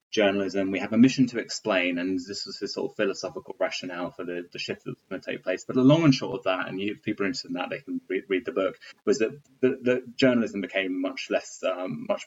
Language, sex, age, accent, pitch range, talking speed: English, male, 20-39, British, 95-125 Hz, 270 wpm